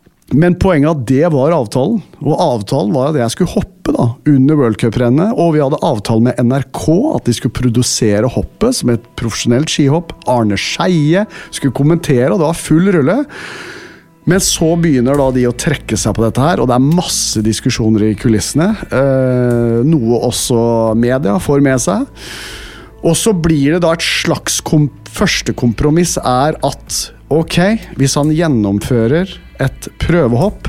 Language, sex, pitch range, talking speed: English, male, 110-150 Hz, 170 wpm